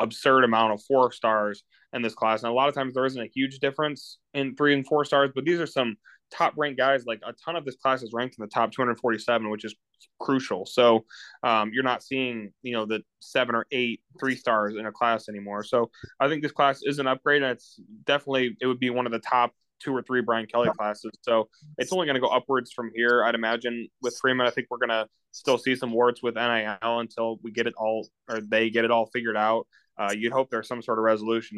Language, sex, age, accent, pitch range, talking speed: English, male, 20-39, American, 110-130 Hz, 245 wpm